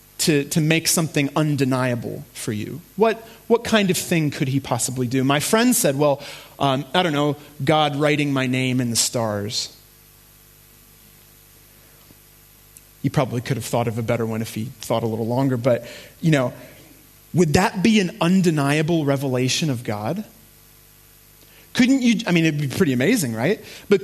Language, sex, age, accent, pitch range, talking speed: English, male, 30-49, American, 135-190 Hz, 165 wpm